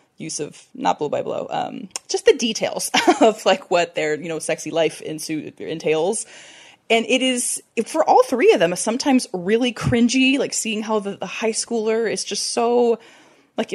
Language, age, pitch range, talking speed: English, 20-39, 170-230 Hz, 185 wpm